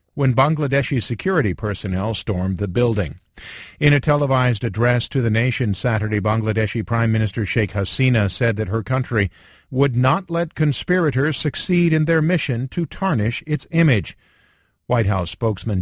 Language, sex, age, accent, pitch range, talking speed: English, male, 50-69, American, 110-150 Hz, 150 wpm